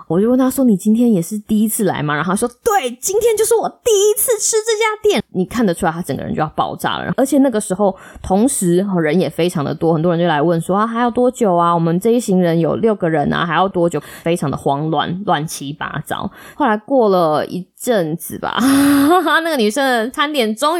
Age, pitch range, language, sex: 20-39, 170-225 Hz, Chinese, female